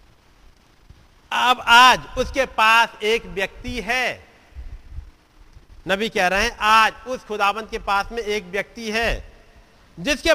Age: 50-69